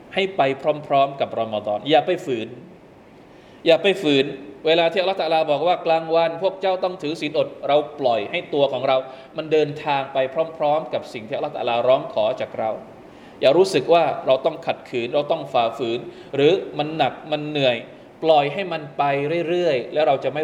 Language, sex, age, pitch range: Thai, male, 20-39, 135-160 Hz